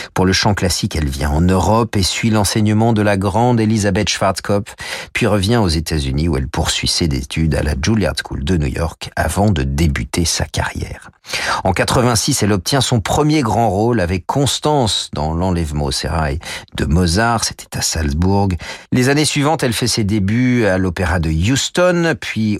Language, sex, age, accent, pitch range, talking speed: French, male, 40-59, French, 85-120 Hz, 180 wpm